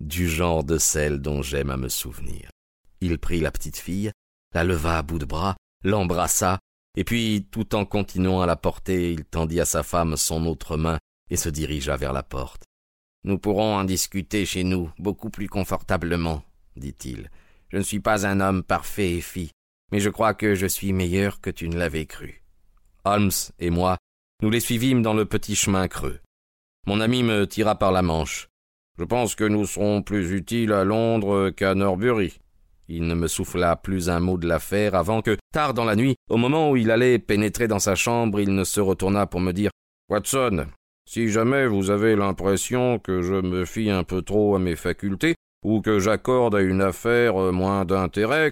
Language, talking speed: French, 195 wpm